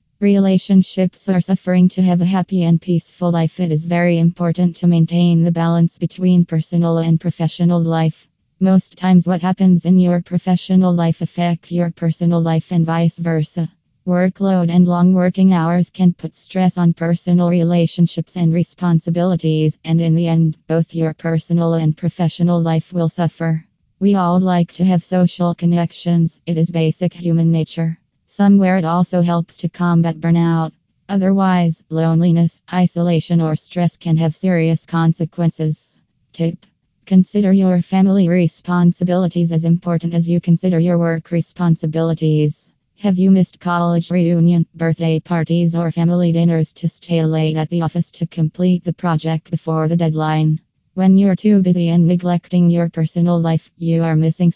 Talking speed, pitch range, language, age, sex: 155 wpm, 165-180 Hz, English, 20-39, female